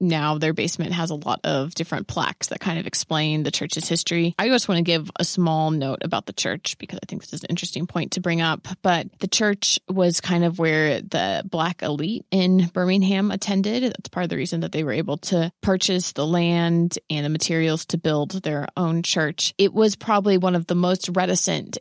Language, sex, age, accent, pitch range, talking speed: English, female, 20-39, American, 165-185 Hz, 220 wpm